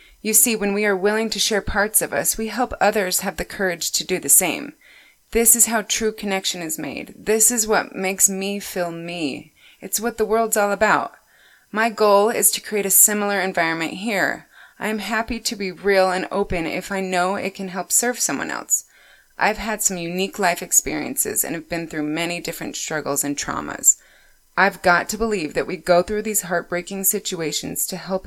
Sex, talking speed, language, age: female, 200 wpm, English, 20-39